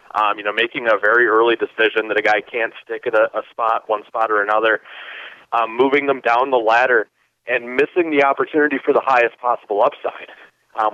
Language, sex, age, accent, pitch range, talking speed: English, male, 30-49, American, 120-160 Hz, 205 wpm